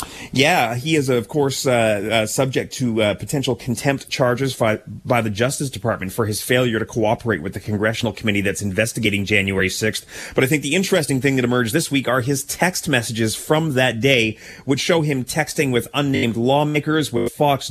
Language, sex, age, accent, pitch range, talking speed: English, male, 30-49, American, 115-150 Hz, 190 wpm